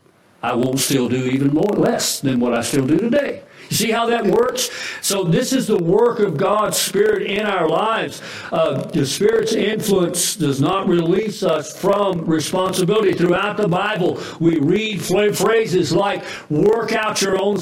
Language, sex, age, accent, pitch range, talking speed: English, male, 60-79, American, 145-205 Hz, 175 wpm